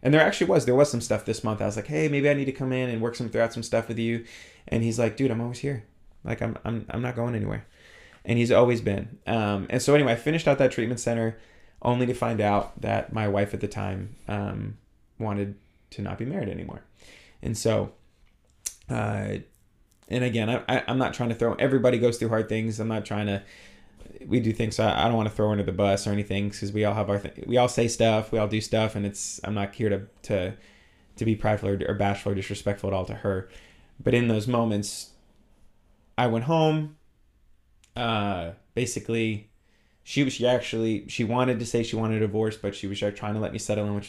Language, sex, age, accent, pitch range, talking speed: English, male, 20-39, American, 100-120 Hz, 235 wpm